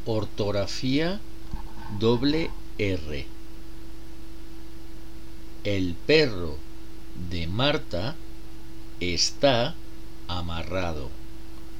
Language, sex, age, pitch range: Spanish, male, 50-69, 65-110 Hz